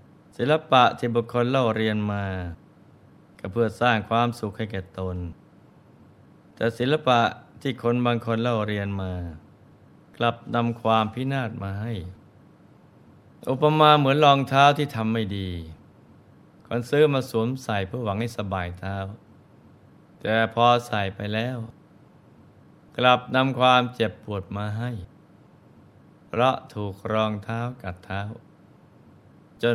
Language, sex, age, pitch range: Thai, male, 20-39, 100-125 Hz